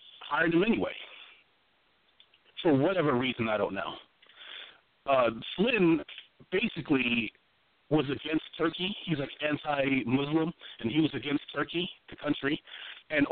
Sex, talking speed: male, 115 wpm